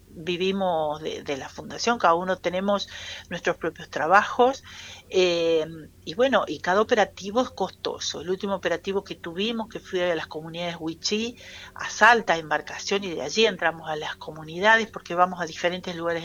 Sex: female